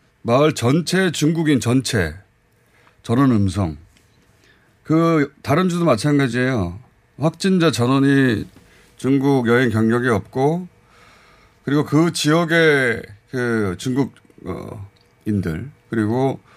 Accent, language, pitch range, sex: native, Korean, 110-155 Hz, male